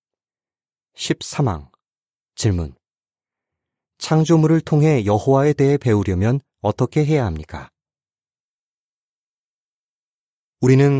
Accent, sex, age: native, male, 30-49